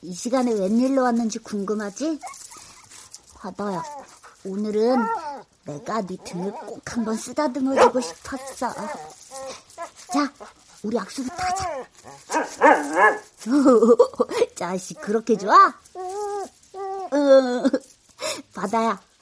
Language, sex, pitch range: Korean, male, 220-285 Hz